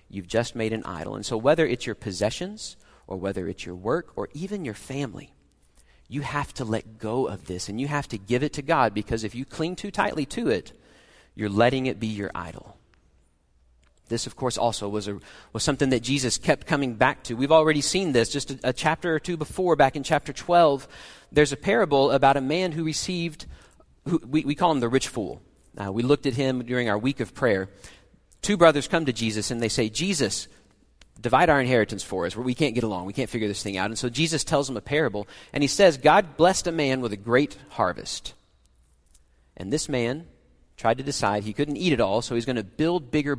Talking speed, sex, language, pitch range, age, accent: 225 wpm, male, English, 100-150 Hz, 40-59, American